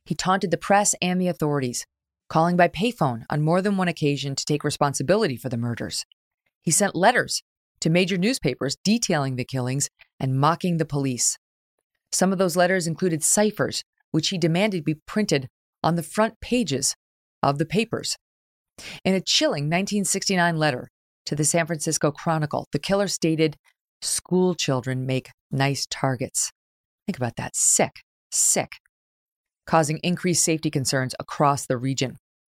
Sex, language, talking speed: female, English, 150 wpm